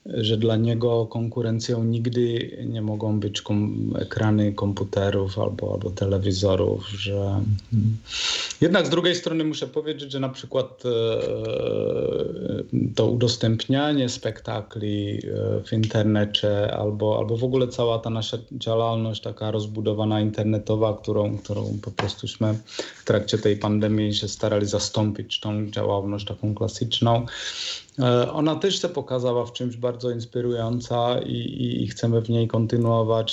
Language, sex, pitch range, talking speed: Polish, male, 105-120 Hz, 130 wpm